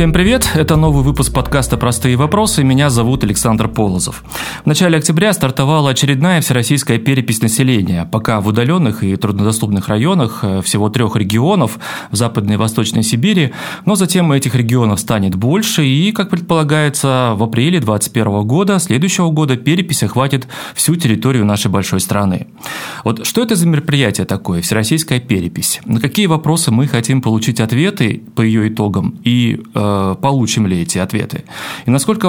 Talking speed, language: 150 wpm, Russian